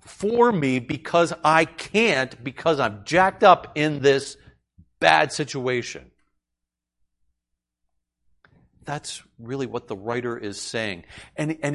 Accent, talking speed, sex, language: American, 110 wpm, male, English